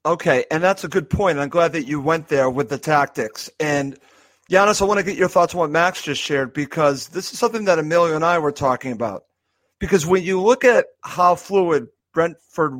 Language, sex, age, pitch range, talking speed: English, male, 40-59, 155-200 Hz, 220 wpm